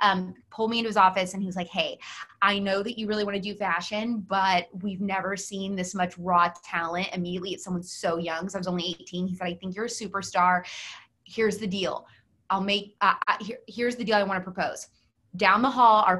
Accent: American